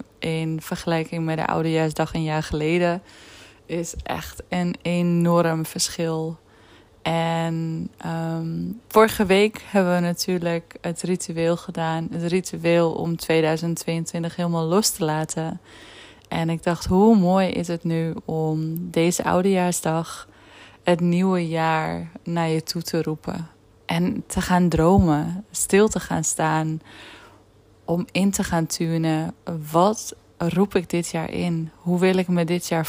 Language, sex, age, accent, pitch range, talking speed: Dutch, female, 20-39, Dutch, 160-180 Hz, 135 wpm